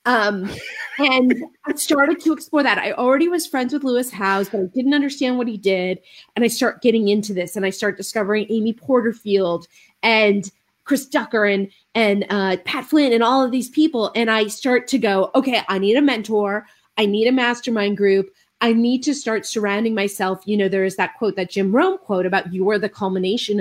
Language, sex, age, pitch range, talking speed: English, female, 30-49, 195-240 Hz, 210 wpm